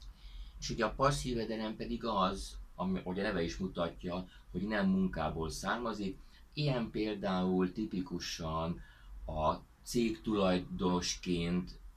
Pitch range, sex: 75-100 Hz, male